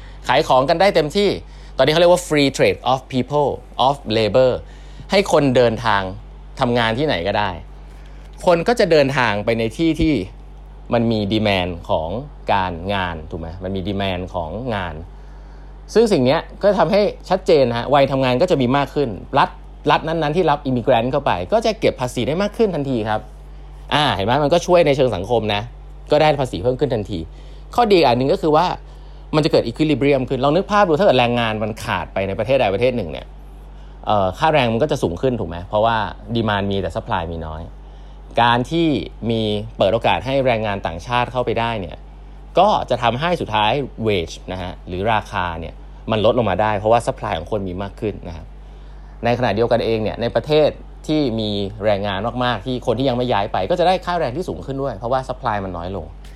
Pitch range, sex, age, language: 100-140 Hz, male, 20-39, English